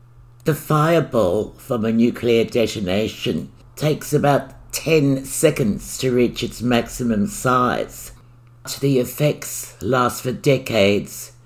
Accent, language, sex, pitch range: British, English, male, 115-135 Hz